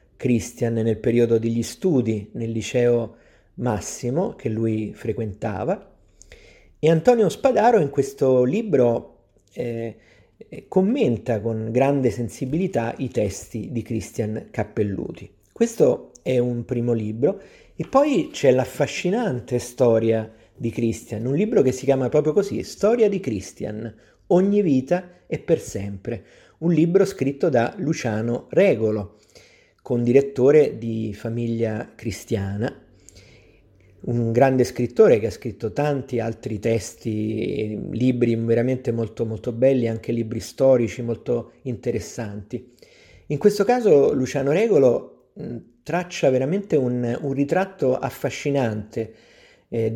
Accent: native